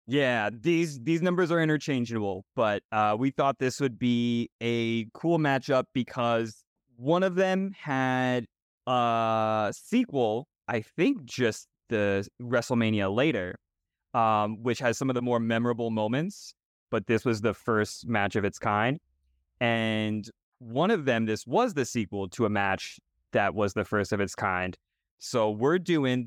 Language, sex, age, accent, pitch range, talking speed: English, male, 20-39, American, 105-125 Hz, 155 wpm